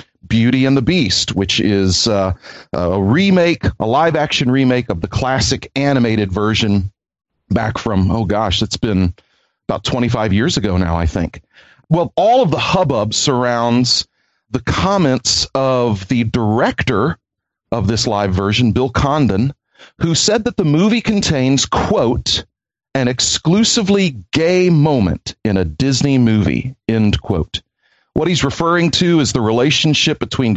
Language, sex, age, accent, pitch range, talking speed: English, male, 40-59, American, 105-140 Hz, 145 wpm